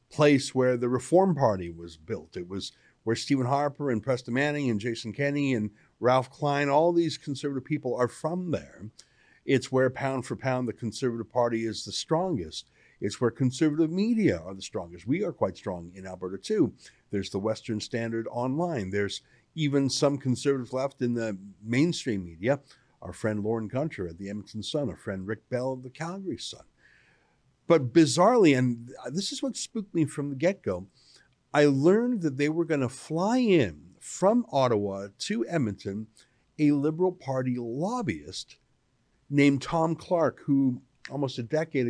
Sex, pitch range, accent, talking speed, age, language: male, 110-145 Hz, American, 170 wpm, 50-69, English